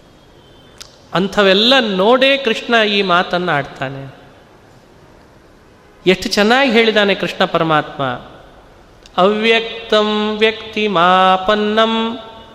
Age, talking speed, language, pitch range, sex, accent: 40-59, 65 wpm, Kannada, 175-230 Hz, male, native